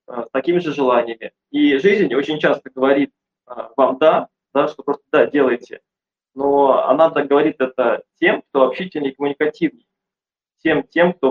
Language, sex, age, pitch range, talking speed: Russian, male, 20-39, 135-175 Hz, 155 wpm